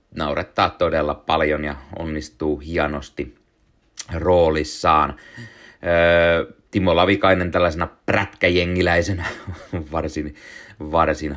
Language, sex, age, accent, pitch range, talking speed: Finnish, male, 30-49, native, 75-95 Hz, 70 wpm